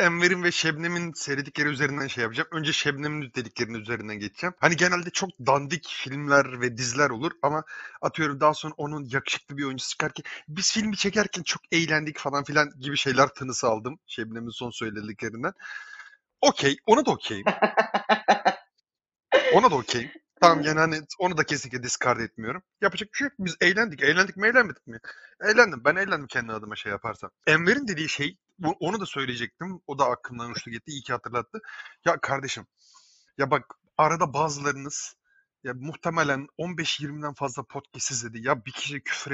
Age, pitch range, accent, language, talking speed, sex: 30-49, 130-175 Hz, native, Turkish, 160 wpm, male